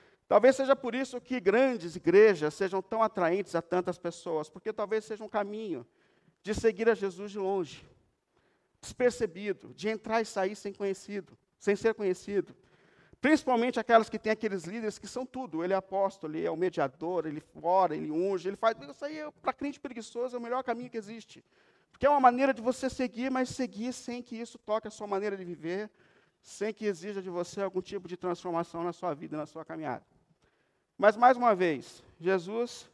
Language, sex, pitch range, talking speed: Portuguese, male, 180-225 Hz, 195 wpm